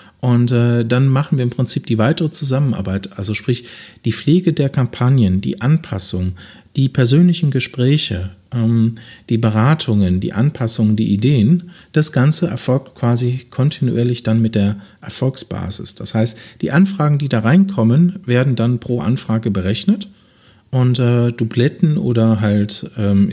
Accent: German